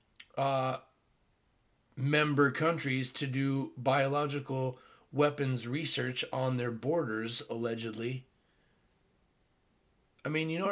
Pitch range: 130-165 Hz